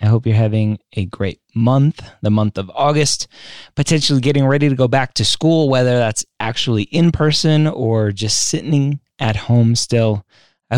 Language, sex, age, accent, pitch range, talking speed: English, male, 20-39, American, 95-125 Hz, 175 wpm